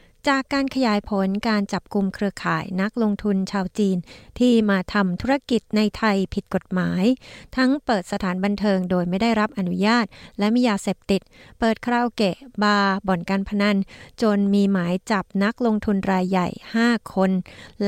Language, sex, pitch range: Thai, female, 185-225 Hz